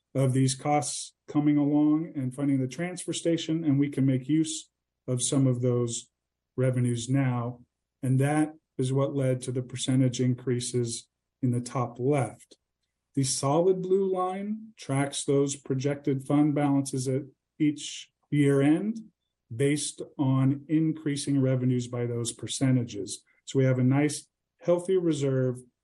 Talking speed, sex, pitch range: 140 wpm, male, 125-155 Hz